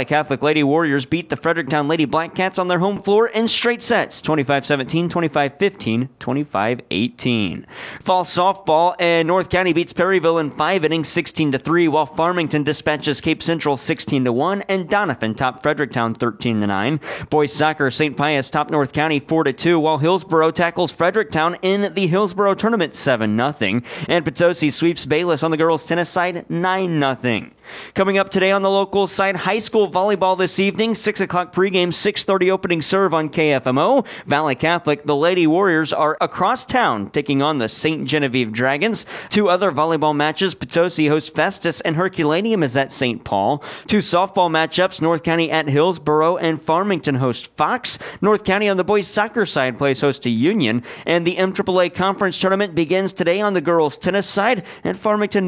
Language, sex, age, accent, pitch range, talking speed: English, male, 30-49, American, 150-190 Hz, 160 wpm